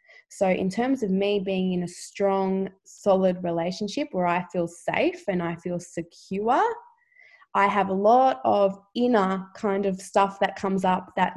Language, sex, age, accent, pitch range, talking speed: English, female, 20-39, Australian, 185-230 Hz, 170 wpm